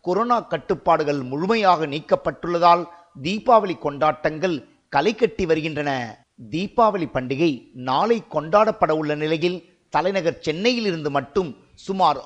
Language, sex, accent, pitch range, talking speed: Tamil, male, native, 155-190 Hz, 95 wpm